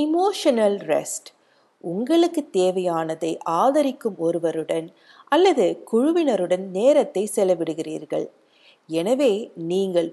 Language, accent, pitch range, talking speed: Tamil, native, 170-260 Hz, 70 wpm